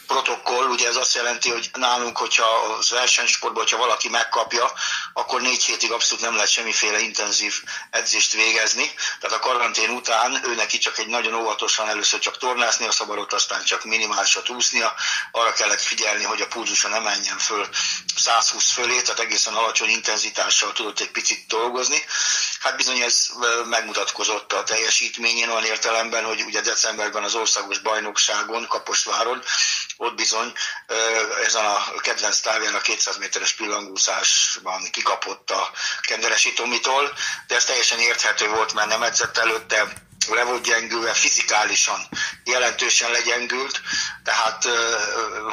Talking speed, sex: 140 wpm, male